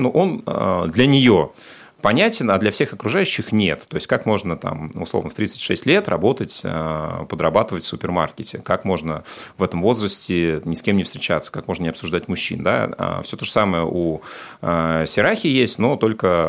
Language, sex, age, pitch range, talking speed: Russian, male, 30-49, 80-100 Hz, 175 wpm